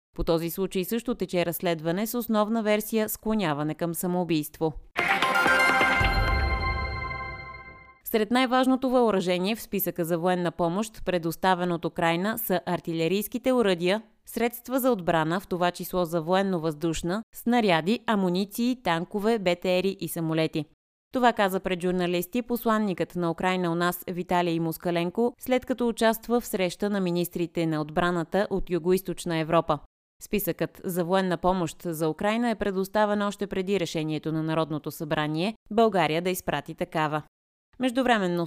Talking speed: 130 wpm